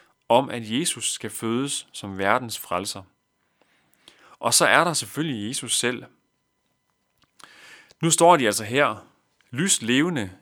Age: 30-49